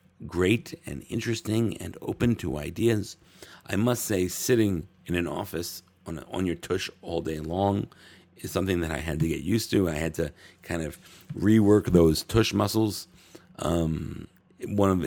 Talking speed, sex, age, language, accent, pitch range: 170 wpm, male, 50-69, English, American, 85-95 Hz